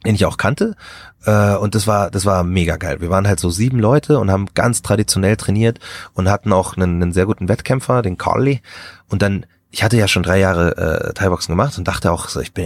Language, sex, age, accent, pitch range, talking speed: German, male, 30-49, German, 95-120 Hz, 230 wpm